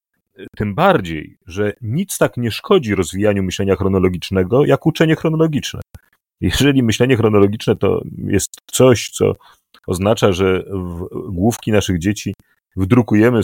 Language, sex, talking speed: Polish, male, 120 wpm